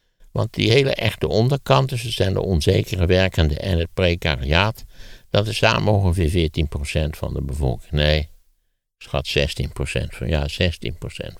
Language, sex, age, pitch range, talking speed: Dutch, male, 60-79, 75-105 Hz, 140 wpm